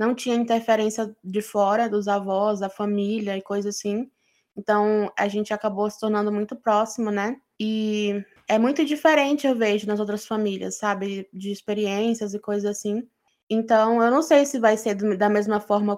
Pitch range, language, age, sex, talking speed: 205-225 Hz, Portuguese, 10-29, female, 175 wpm